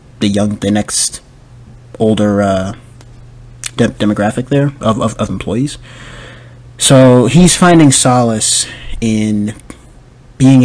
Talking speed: 105 wpm